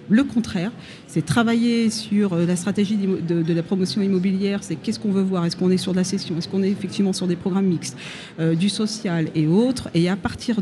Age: 40-59